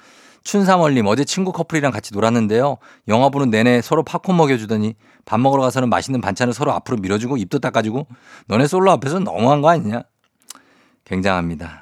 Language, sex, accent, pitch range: Korean, male, native, 105-145 Hz